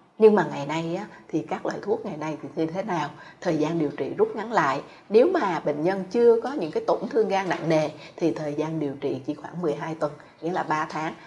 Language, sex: Vietnamese, female